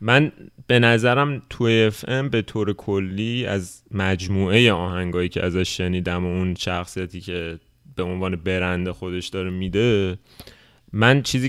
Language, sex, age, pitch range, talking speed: Persian, male, 30-49, 95-125 Hz, 135 wpm